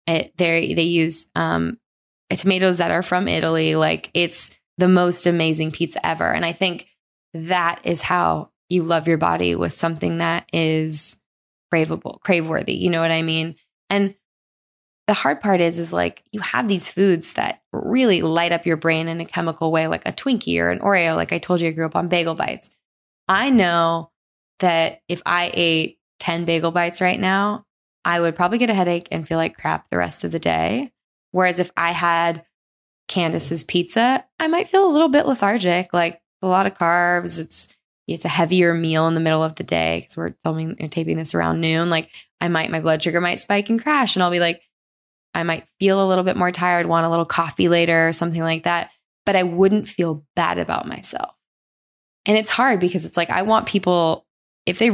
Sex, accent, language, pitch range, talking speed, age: female, American, English, 165-190 Hz, 205 wpm, 20-39